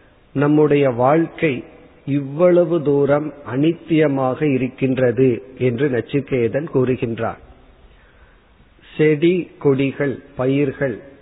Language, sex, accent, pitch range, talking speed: Tamil, male, native, 125-150 Hz, 60 wpm